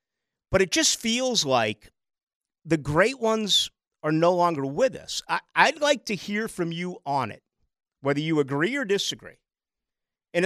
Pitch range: 200-320 Hz